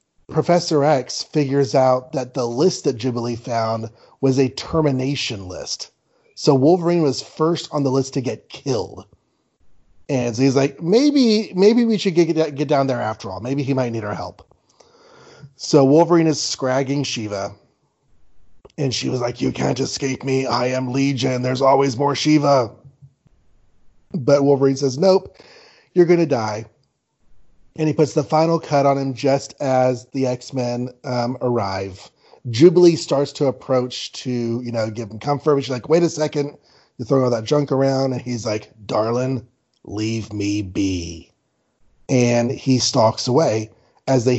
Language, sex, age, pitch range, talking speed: English, male, 30-49, 120-145 Hz, 160 wpm